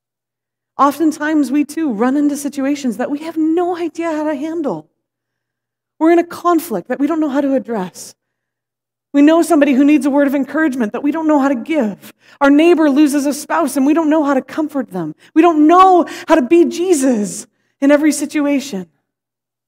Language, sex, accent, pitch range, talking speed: English, female, American, 235-315 Hz, 195 wpm